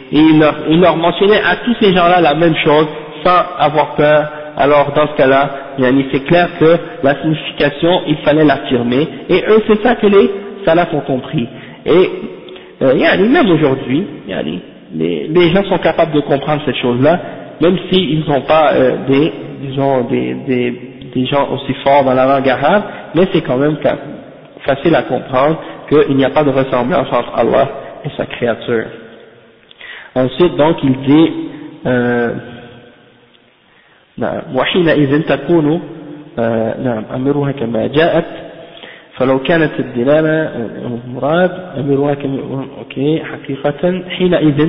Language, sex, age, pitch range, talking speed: French, male, 50-69, 130-165 Hz, 145 wpm